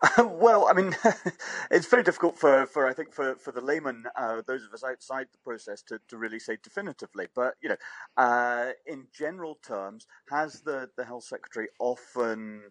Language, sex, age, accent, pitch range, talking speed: English, male, 40-59, British, 105-130 Hz, 185 wpm